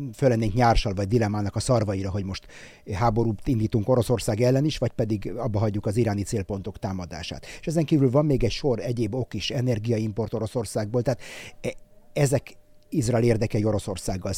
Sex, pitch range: male, 105-125 Hz